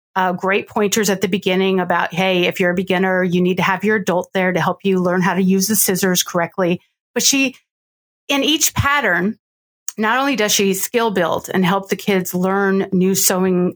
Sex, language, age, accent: female, English, 30-49, American